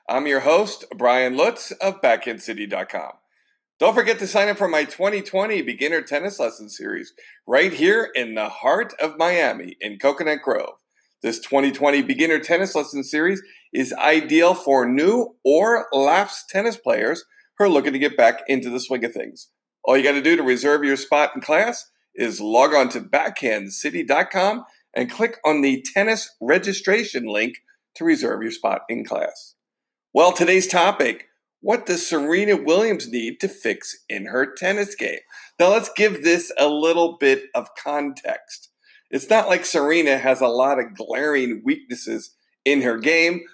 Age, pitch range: 50-69, 140-205 Hz